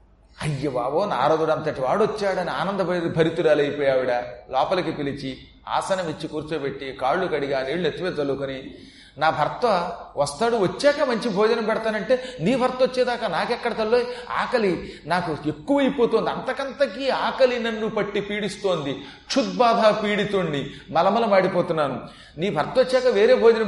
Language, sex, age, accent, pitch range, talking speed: Telugu, male, 40-59, native, 160-235 Hz, 125 wpm